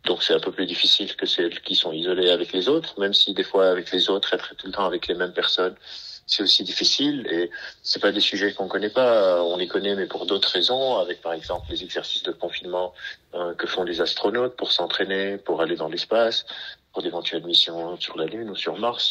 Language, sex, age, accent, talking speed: French, male, 50-69, French, 230 wpm